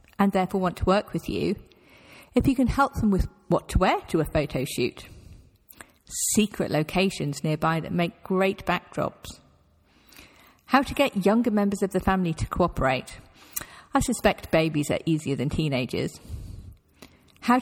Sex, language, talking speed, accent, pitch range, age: female, English, 155 wpm, British, 170-245 Hz, 50-69